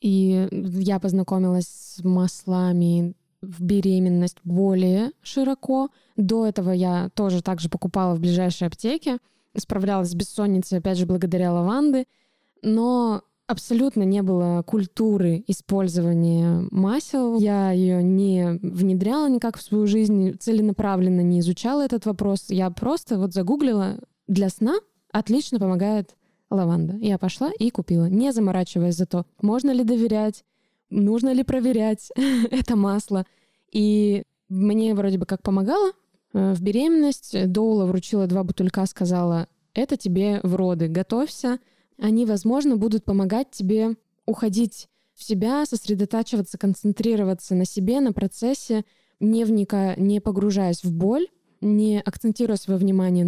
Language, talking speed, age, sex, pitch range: Russian, 125 wpm, 20-39, female, 185-225 Hz